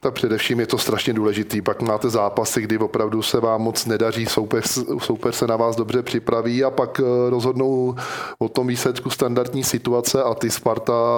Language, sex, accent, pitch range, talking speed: Czech, male, native, 110-120 Hz, 175 wpm